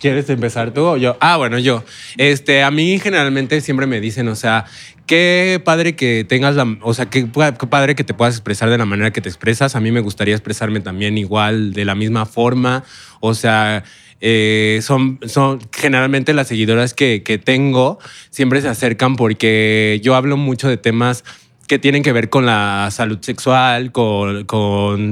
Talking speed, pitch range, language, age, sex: 185 wpm, 110-130 Hz, Spanish, 20-39, male